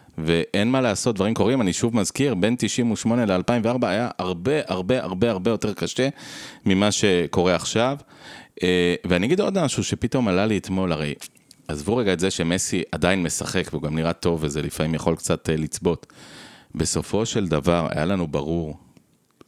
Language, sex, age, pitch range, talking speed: Hebrew, male, 30-49, 80-105 Hz, 165 wpm